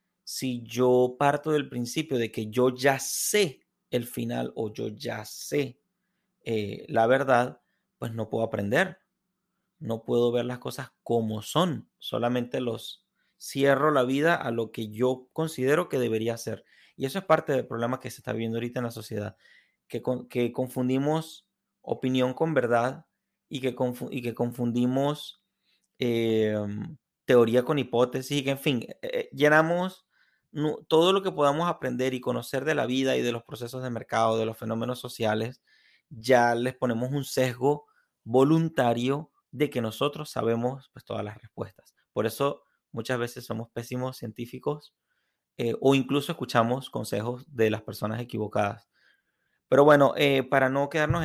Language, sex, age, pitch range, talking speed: Spanish, male, 30-49, 115-145 Hz, 160 wpm